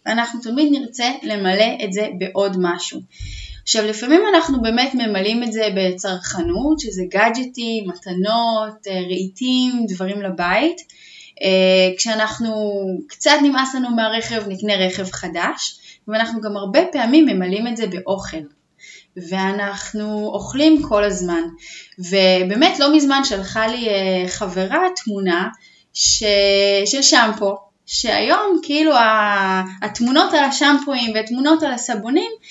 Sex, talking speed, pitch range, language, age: female, 110 wpm, 200-295 Hz, Hebrew, 20-39